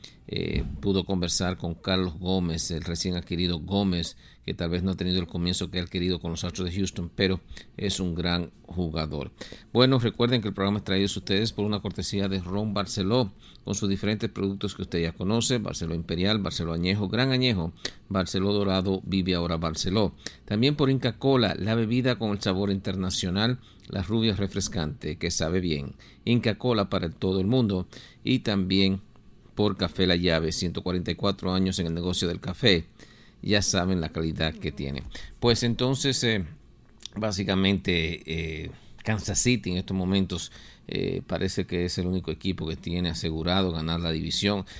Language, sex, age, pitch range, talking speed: English, male, 50-69, 85-100 Hz, 170 wpm